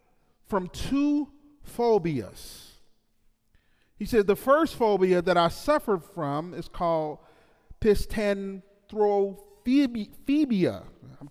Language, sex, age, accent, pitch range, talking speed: English, male, 40-59, American, 165-230 Hz, 85 wpm